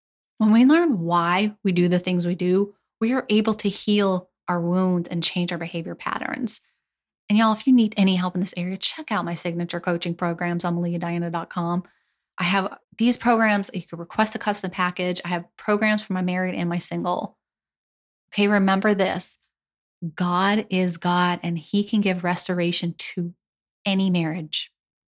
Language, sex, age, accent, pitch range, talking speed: English, female, 30-49, American, 175-195 Hz, 175 wpm